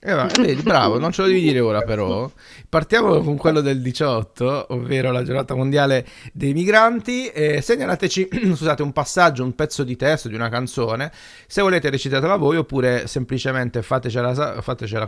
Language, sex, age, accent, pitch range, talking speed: Italian, male, 30-49, native, 115-155 Hz, 155 wpm